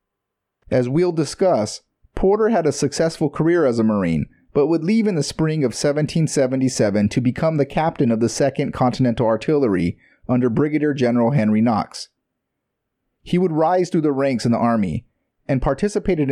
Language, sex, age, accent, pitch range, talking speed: English, male, 30-49, American, 115-155 Hz, 160 wpm